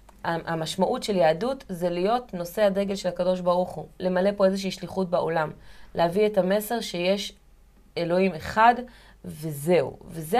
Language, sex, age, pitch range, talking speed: Hebrew, female, 30-49, 175-215 Hz, 140 wpm